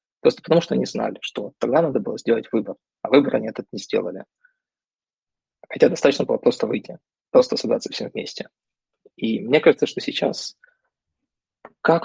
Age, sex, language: 20-39, male, Russian